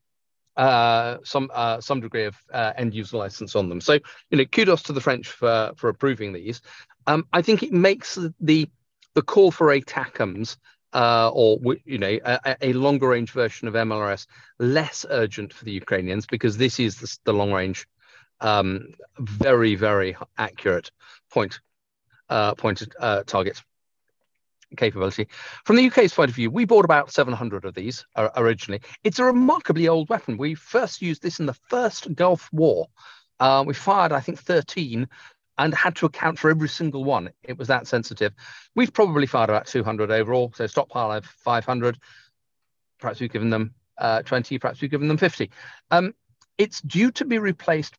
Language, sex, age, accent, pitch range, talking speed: English, male, 40-59, British, 115-160 Hz, 175 wpm